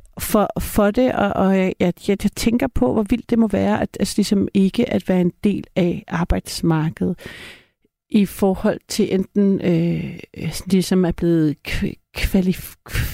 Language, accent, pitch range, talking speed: Danish, native, 170-210 Hz, 160 wpm